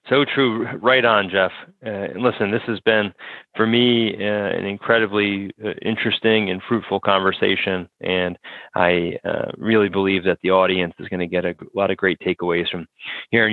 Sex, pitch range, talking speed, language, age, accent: male, 95-120 Hz, 180 wpm, English, 30-49, American